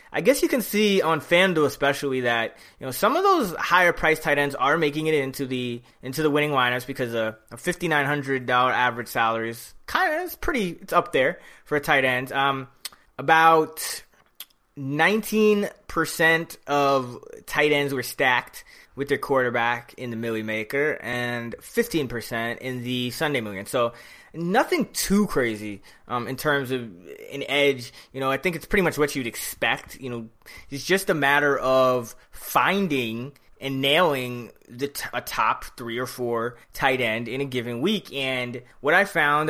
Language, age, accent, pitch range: English, 20-39, American, 120-155 Hz